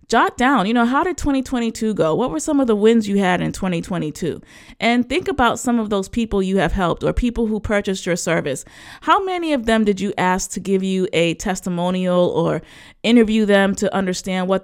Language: English